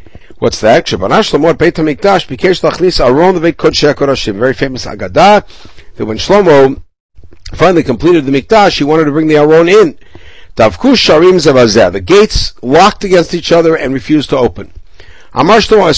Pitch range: 120-185 Hz